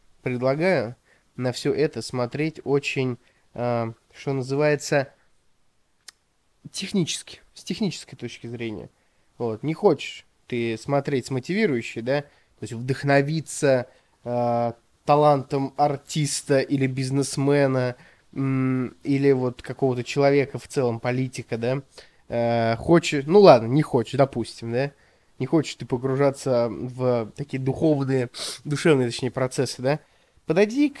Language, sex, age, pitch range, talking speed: Russian, male, 20-39, 120-155 Hz, 115 wpm